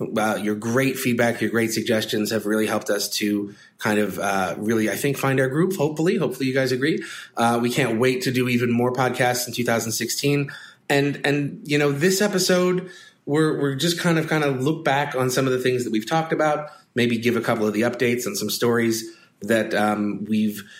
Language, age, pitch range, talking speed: English, 30-49, 110-140 Hz, 215 wpm